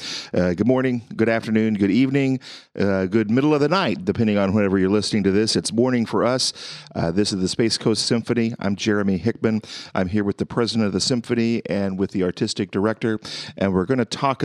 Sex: male